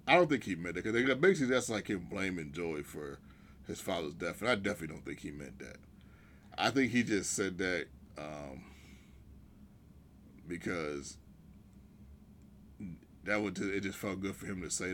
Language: English